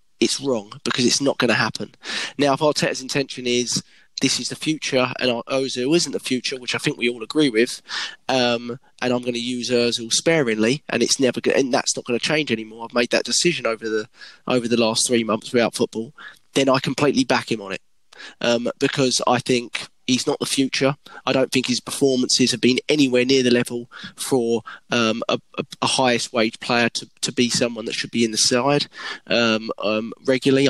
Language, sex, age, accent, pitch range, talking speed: English, male, 20-39, British, 120-140 Hz, 210 wpm